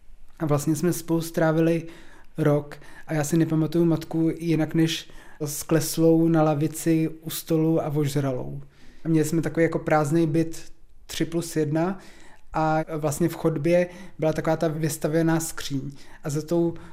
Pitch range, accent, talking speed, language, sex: 155-165 Hz, native, 150 wpm, Czech, male